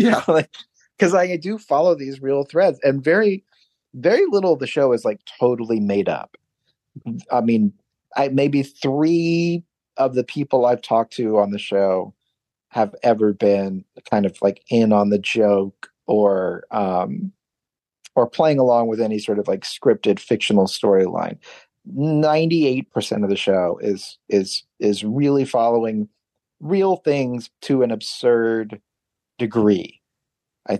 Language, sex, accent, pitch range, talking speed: English, male, American, 105-140 Hz, 145 wpm